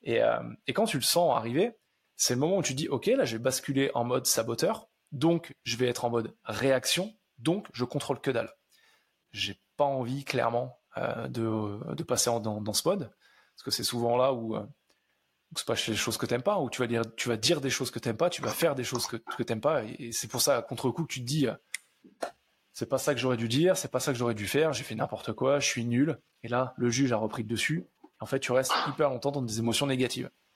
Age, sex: 20-39, male